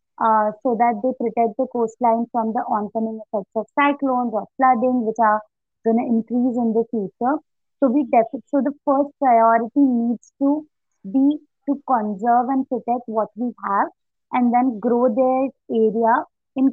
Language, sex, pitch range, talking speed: English, female, 225-260 Hz, 165 wpm